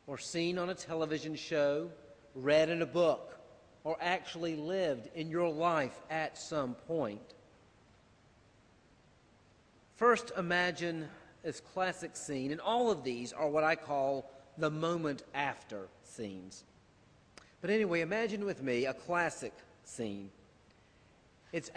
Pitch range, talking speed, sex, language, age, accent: 130-175 Hz, 125 wpm, male, English, 40-59, American